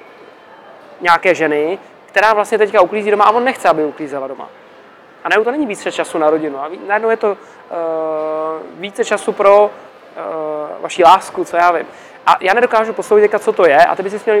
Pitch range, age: 170-205 Hz, 20-39